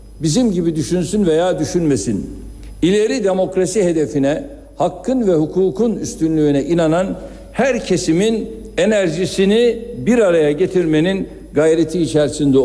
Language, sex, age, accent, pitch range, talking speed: Turkish, male, 60-79, native, 145-205 Hz, 100 wpm